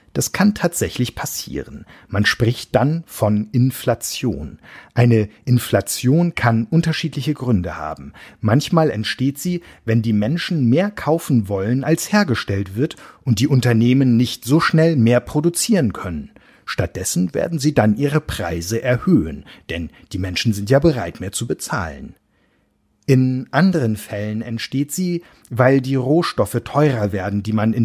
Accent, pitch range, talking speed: German, 105-145 Hz, 140 wpm